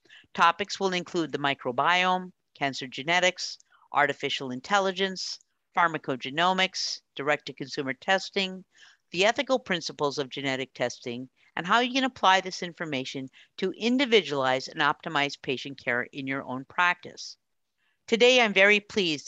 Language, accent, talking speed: English, American, 120 wpm